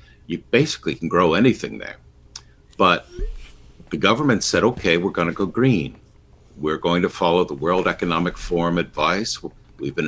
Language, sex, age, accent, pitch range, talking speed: English, male, 60-79, American, 80-110 Hz, 155 wpm